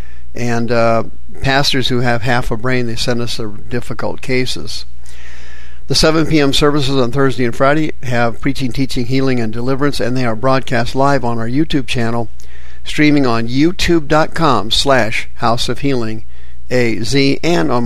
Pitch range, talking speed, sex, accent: 105-140 Hz, 150 wpm, male, American